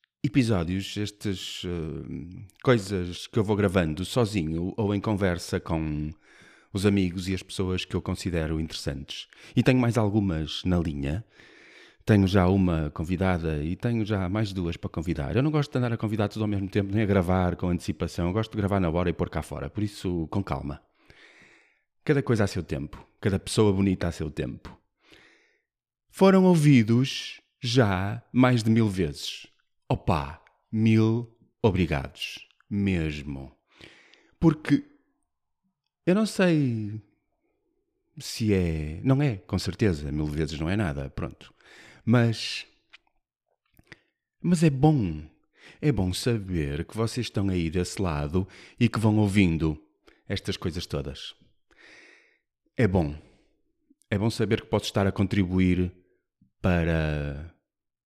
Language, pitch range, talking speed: Portuguese, 85-115 Hz, 140 wpm